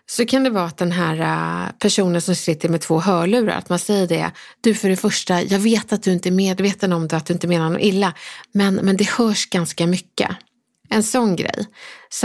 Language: Swedish